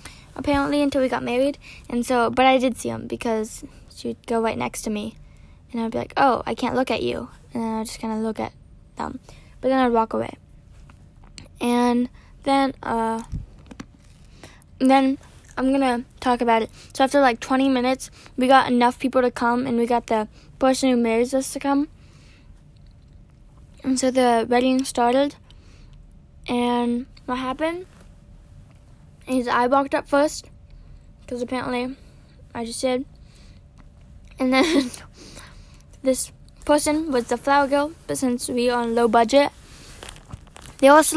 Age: 10-29